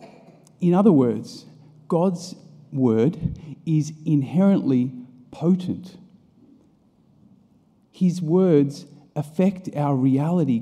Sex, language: male, English